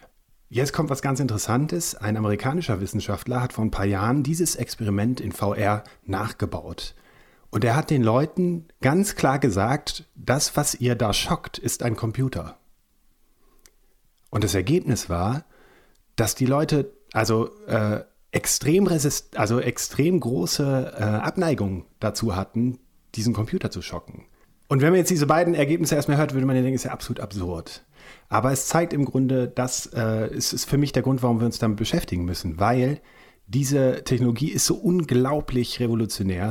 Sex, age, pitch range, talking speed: male, 40-59, 105-135 Hz, 160 wpm